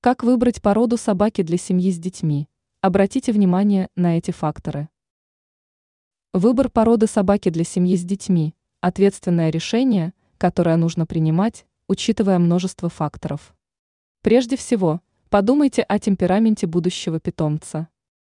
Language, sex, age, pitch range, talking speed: Russian, female, 20-39, 175-225 Hz, 115 wpm